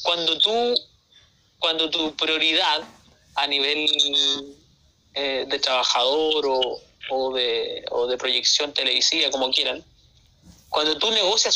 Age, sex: 30-49, male